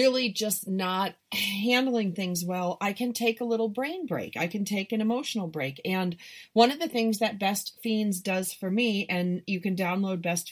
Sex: female